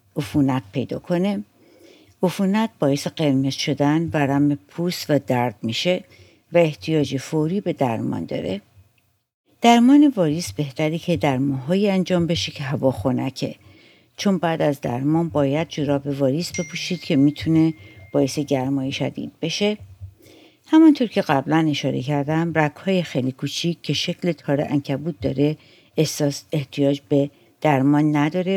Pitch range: 135-170 Hz